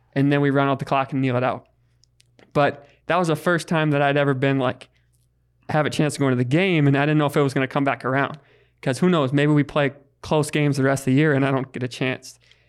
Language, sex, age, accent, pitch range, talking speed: English, male, 20-39, American, 130-150 Hz, 300 wpm